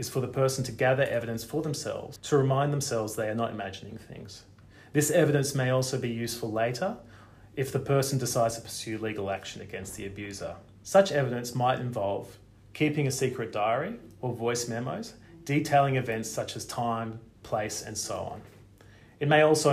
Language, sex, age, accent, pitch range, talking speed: English, male, 30-49, Australian, 110-140 Hz, 175 wpm